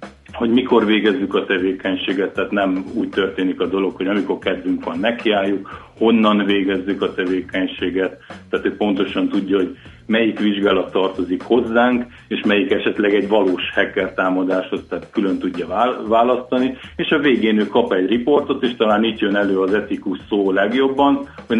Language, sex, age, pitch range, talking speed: Hungarian, male, 50-69, 95-115 Hz, 155 wpm